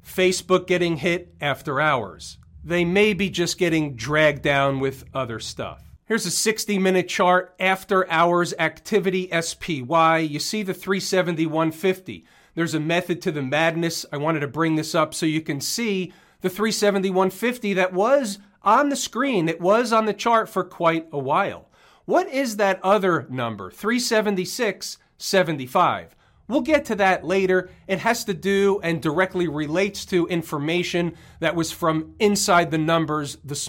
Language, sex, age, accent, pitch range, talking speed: English, male, 40-59, American, 160-200 Hz, 155 wpm